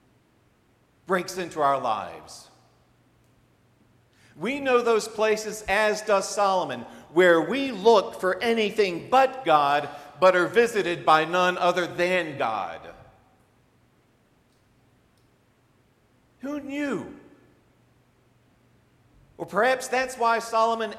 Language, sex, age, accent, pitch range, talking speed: English, male, 50-69, American, 145-225 Hz, 95 wpm